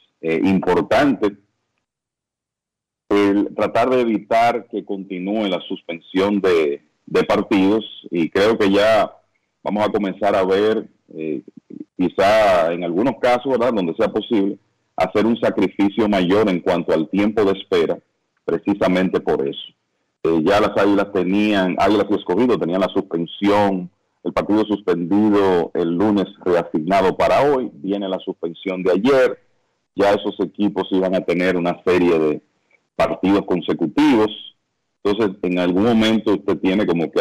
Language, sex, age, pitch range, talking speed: Spanish, male, 40-59, 90-105 Hz, 140 wpm